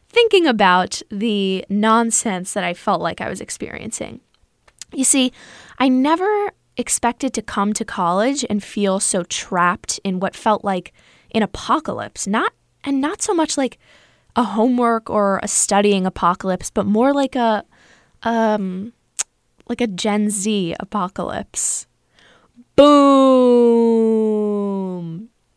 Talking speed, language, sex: 125 wpm, English, female